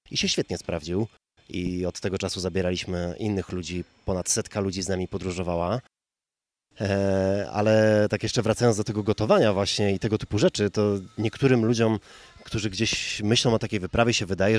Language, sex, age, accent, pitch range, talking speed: Polish, male, 30-49, native, 95-115 Hz, 165 wpm